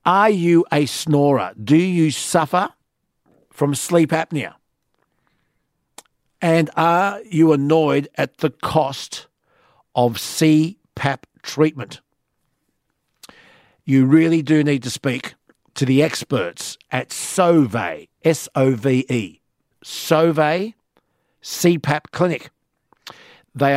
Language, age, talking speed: English, 50-69, 90 wpm